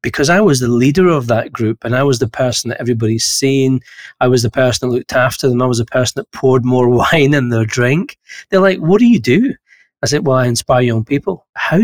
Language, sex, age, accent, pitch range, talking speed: English, male, 40-59, British, 120-140 Hz, 250 wpm